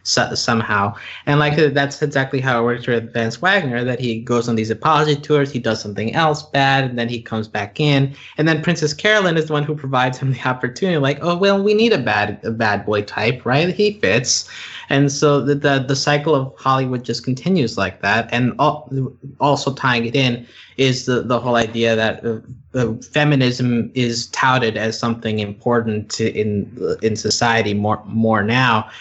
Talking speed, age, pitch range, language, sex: 195 wpm, 20-39, 110-140 Hz, English, male